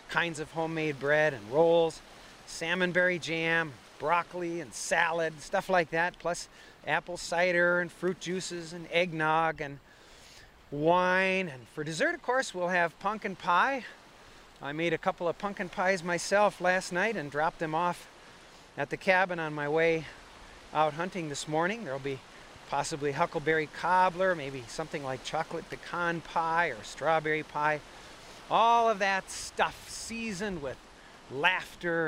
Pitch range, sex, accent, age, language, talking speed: 145-185 Hz, male, American, 40-59, English, 145 wpm